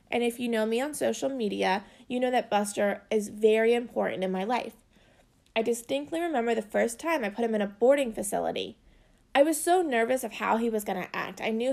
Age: 20-39